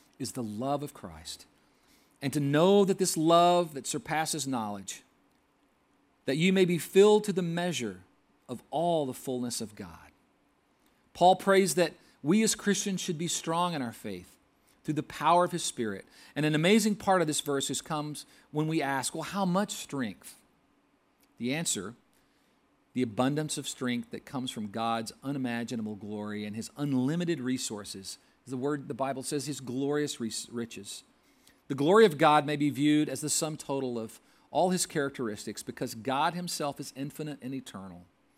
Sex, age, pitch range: male, 40-59, 125-175 Hz